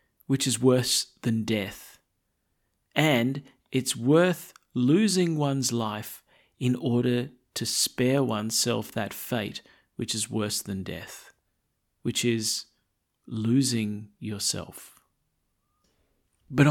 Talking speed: 100 wpm